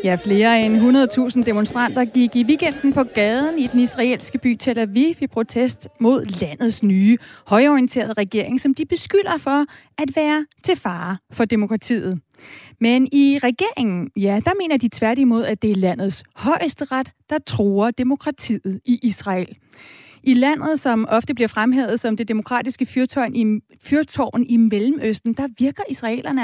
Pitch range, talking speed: 215-275 Hz, 150 wpm